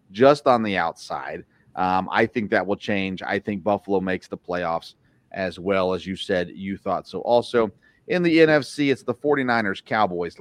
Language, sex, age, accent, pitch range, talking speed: English, male, 40-59, American, 100-140 Hz, 185 wpm